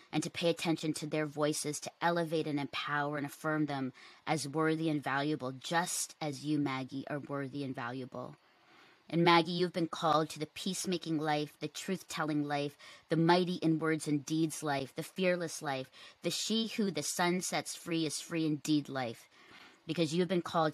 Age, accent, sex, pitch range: 30-49, American, female, 145-170 Hz